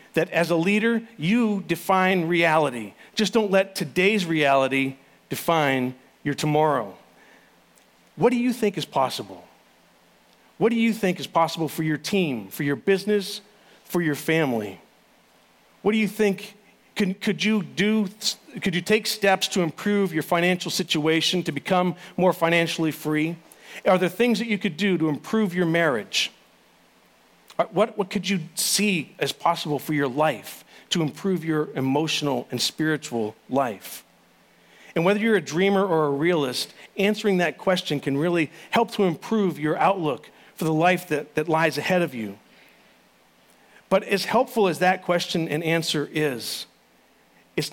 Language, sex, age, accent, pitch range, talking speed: English, male, 40-59, American, 155-200 Hz, 155 wpm